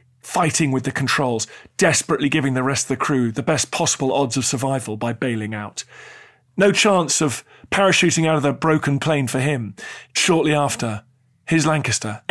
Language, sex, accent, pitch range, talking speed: English, male, British, 120-155 Hz, 170 wpm